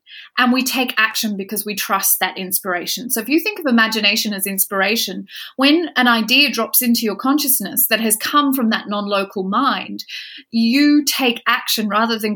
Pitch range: 215-270 Hz